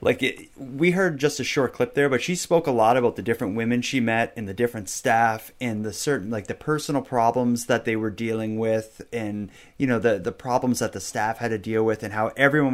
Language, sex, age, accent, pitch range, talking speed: English, male, 30-49, American, 110-130 Hz, 240 wpm